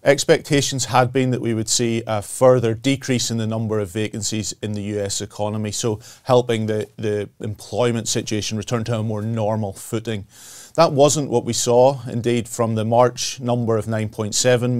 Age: 30-49